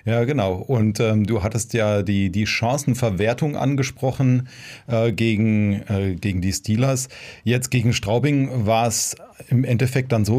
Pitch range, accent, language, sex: 105-125 Hz, German, German, male